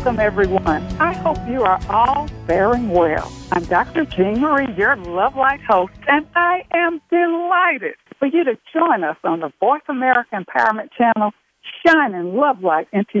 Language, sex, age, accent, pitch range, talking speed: English, female, 60-79, American, 195-295 Hz, 165 wpm